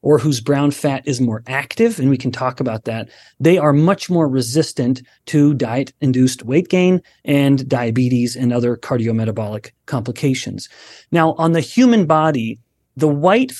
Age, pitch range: 30-49, 130-165 Hz